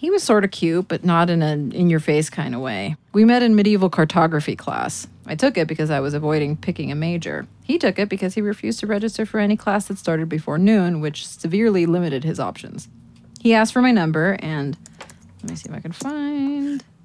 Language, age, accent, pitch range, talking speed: English, 30-49, American, 160-220 Hz, 220 wpm